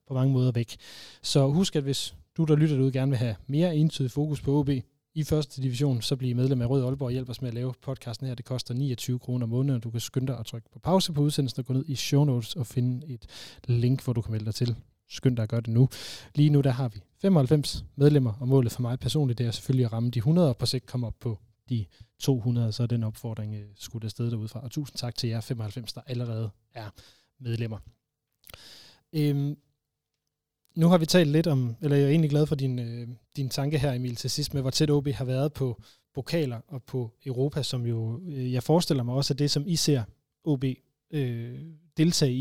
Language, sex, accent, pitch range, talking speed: Danish, male, native, 120-145 Hz, 235 wpm